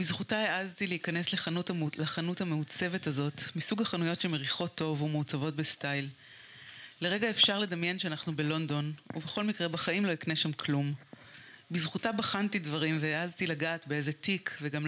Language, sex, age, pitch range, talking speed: Hebrew, female, 30-49, 155-185 Hz, 135 wpm